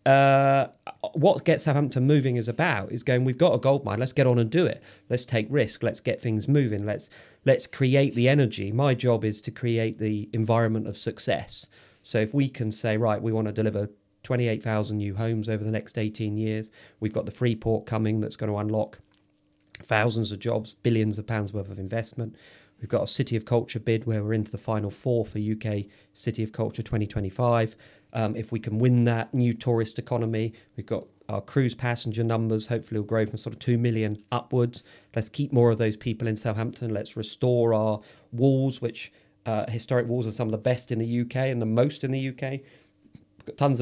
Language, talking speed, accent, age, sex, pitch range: English, 215 wpm, British, 40-59, male, 110-125 Hz